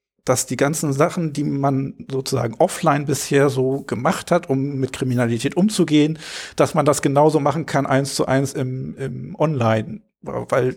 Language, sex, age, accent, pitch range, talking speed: German, male, 50-69, German, 135-175 Hz, 160 wpm